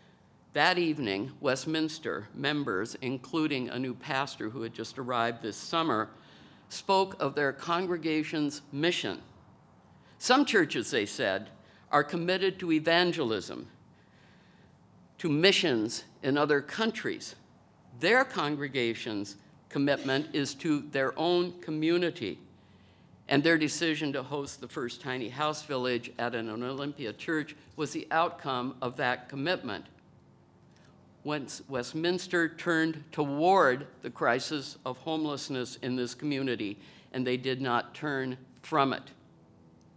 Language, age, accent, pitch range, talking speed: English, 60-79, American, 130-155 Hz, 115 wpm